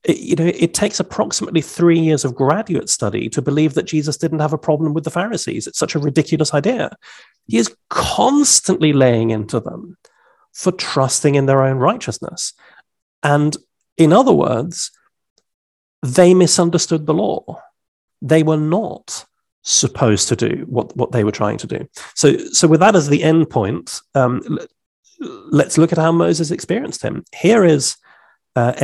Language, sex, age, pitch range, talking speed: English, male, 40-59, 125-165 Hz, 165 wpm